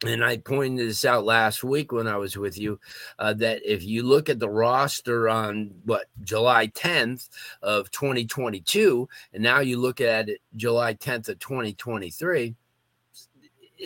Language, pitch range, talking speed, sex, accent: English, 110-145 Hz, 155 wpm, male, American